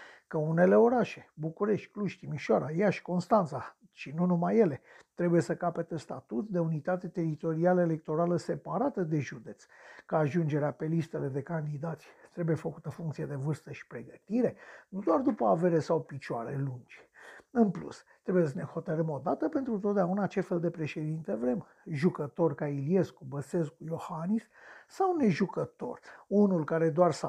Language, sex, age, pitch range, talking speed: Romanian, male, 50-69, 155-205 Hz, 150 wpm